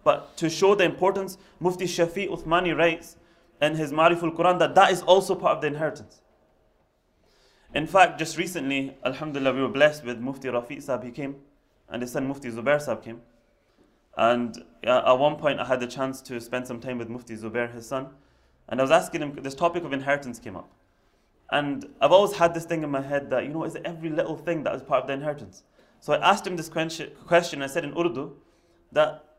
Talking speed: 210 wpm